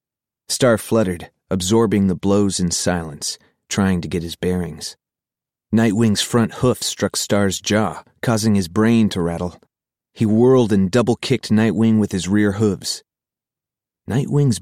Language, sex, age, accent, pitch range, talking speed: English, male, 30-49, American, 90-115 Hz, 135 wpm